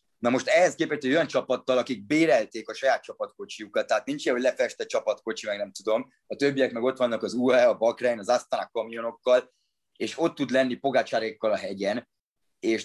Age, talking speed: 30-49, 190 wpm